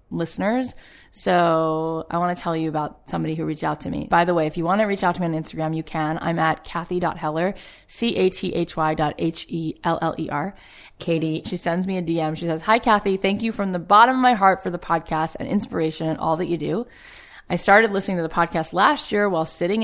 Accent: American